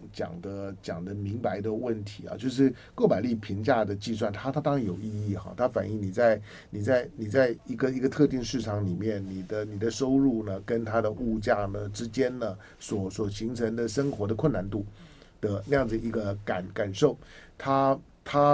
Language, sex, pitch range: Chinese, male, 105-135 Hz